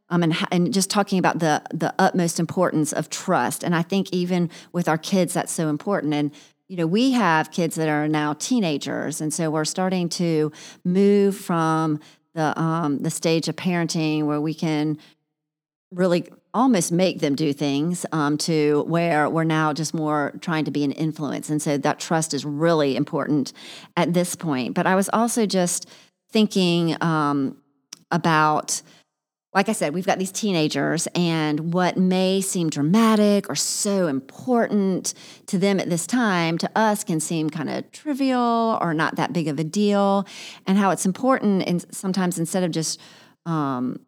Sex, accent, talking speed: female, American, 175 wpm